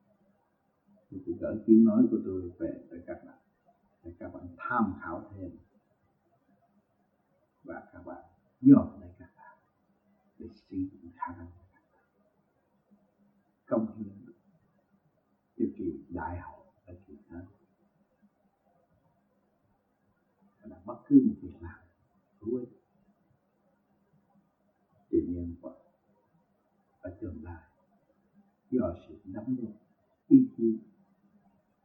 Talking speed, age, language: 60 wpm, 60-79, Vietnamese